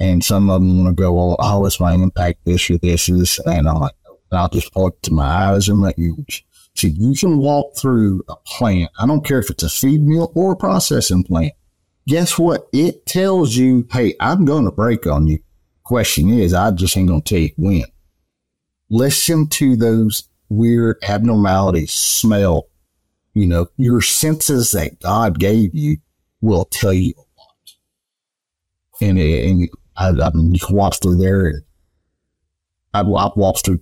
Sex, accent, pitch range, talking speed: male, American, 85-110 Hz, 175 wpm